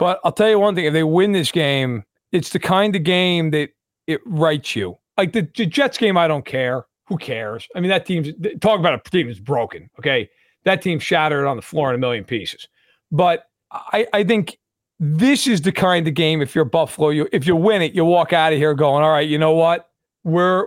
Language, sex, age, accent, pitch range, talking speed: English, male, 40-59, American, 150-215 Hz, 235 wpm